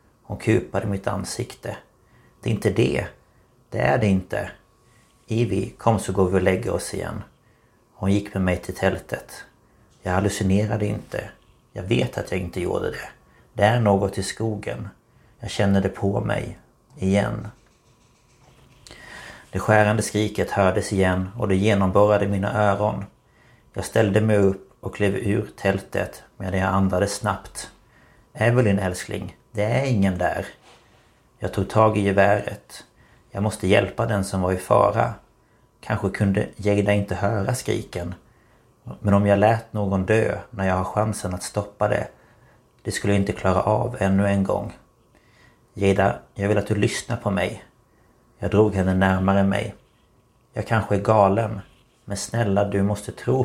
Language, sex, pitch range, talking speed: Swedish, male, 95-110 Hz, 155 wpm